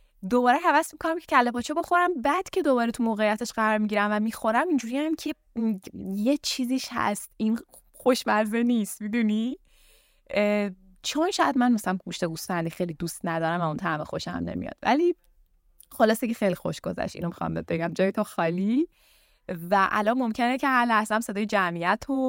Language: Persian